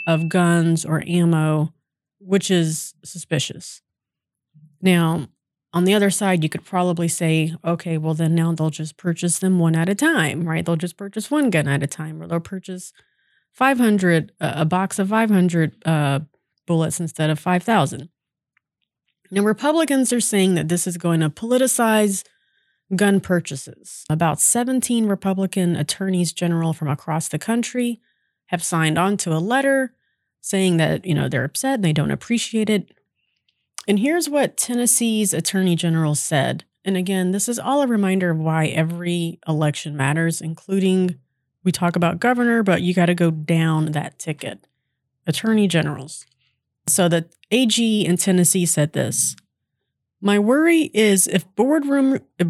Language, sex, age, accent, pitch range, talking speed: English, female, 30-49, American, 160-205 Hz, 155 wpm